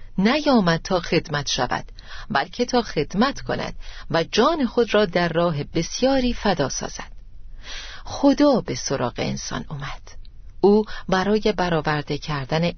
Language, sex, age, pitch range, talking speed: Persian, female, 40-59, 150-205 Hz, 120 wpm